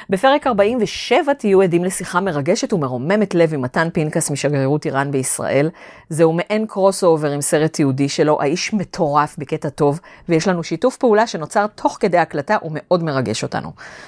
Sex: female